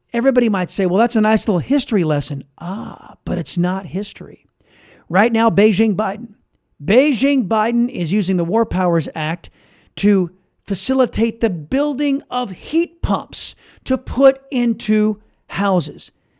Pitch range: 180-230 Hz